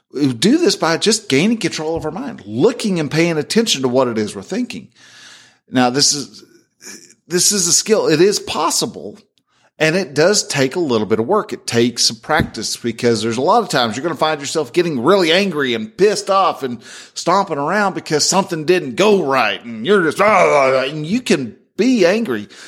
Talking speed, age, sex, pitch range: 200 wpm, 40-59, male, 120-190 Hz